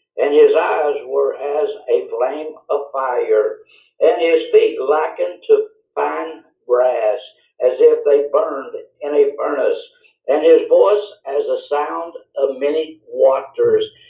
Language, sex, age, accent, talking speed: English, male, 60-79, American, 135 wpm